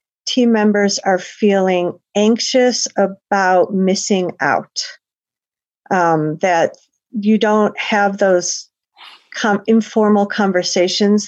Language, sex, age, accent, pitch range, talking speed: English, female, 50-69, American, 180-215 Hz, 90 wpm